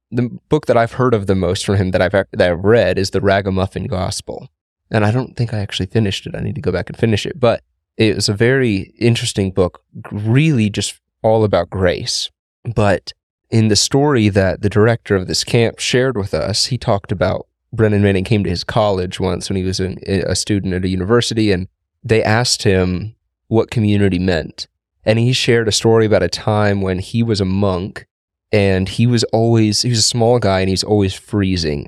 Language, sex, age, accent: English, male, 20-39, American